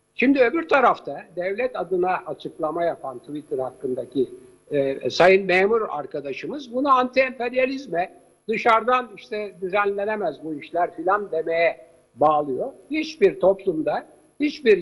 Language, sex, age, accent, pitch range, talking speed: Turkish, male, 60-79, native, 160-235 Hz, 105 wpm